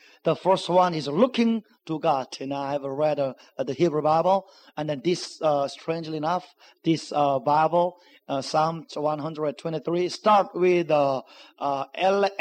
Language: Korean